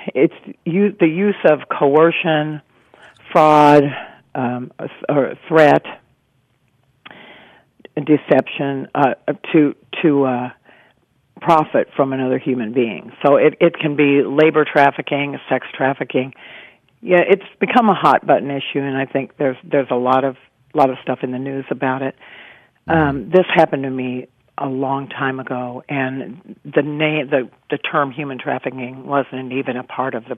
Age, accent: 50-69, American